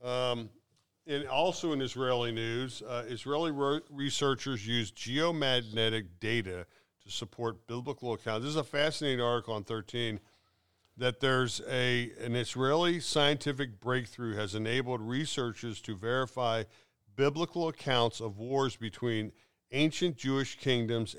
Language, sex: English, male